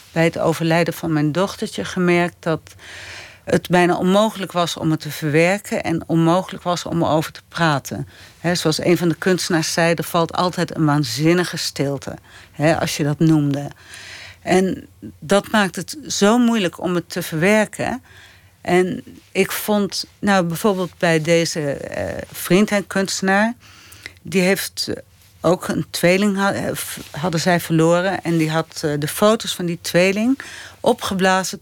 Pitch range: 160-195 Hz